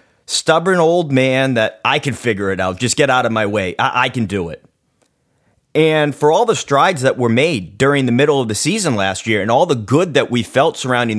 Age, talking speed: 30-49, 235 wpm